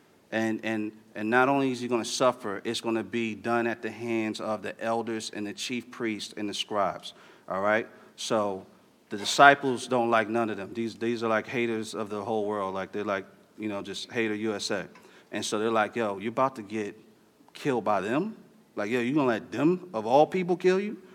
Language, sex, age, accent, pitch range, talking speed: English, male, 40-59, American, 115-150 Hz, 225 wpm